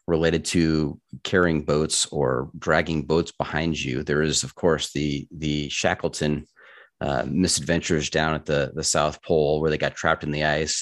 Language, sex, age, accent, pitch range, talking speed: English, male, 30-49, American, 75-85 Hz, 170 wpm